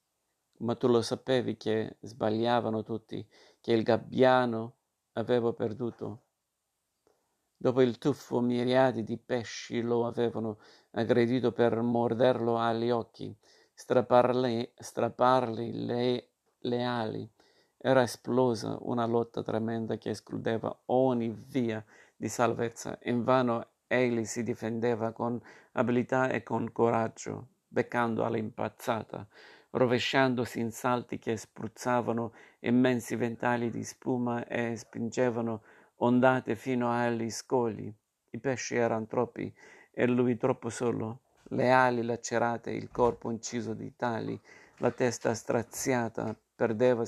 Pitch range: 115-125 Hz